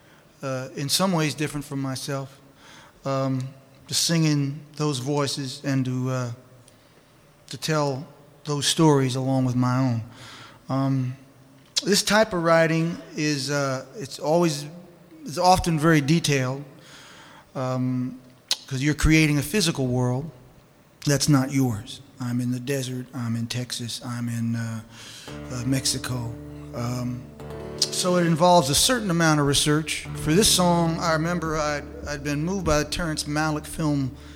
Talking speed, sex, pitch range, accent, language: 145 wpm, male, 130-160 Hz, American, English